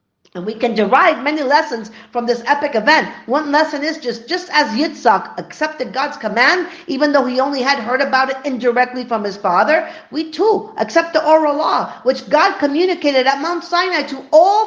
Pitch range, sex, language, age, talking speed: 255-335 Hz, female, English, 40-59, 190 wpm